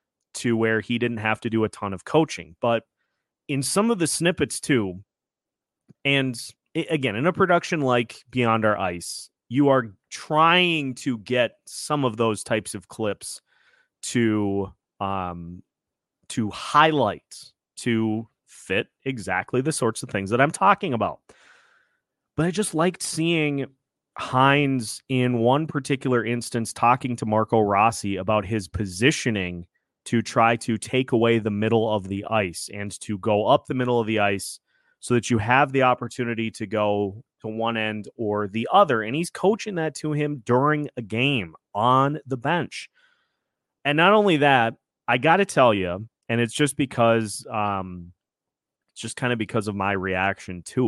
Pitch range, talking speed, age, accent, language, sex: 105-140 Hz, 165 wpm, 30-49, American, English, male